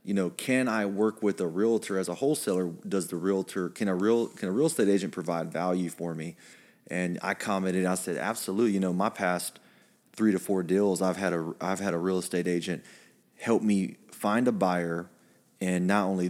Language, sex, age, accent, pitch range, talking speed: English, male, 30-49, American, 90-105 Hz, 210 wpm